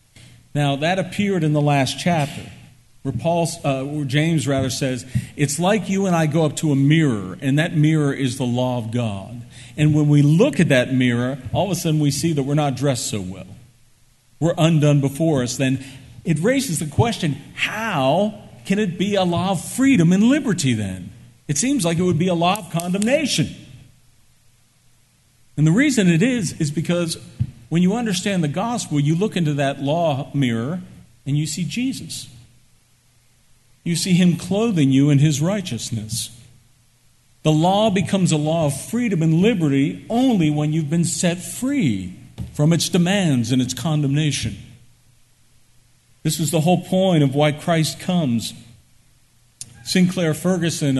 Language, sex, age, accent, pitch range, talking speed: English, male, 50-69, American, 125-170 Hz, 165 wpm